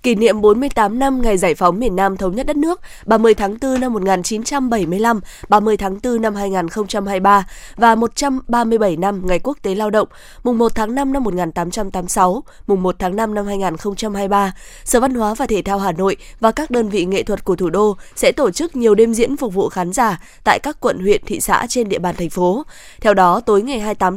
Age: 20-39